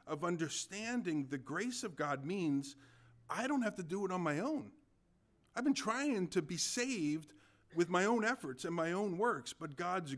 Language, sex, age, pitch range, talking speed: English, male, 50-69, 140-205 Hz, 190 wpm